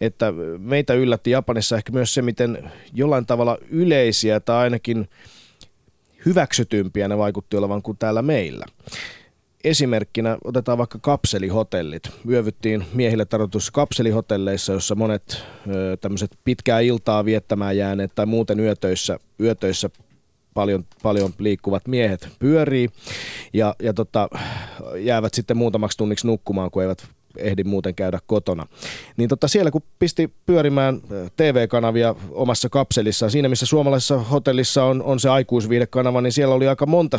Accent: native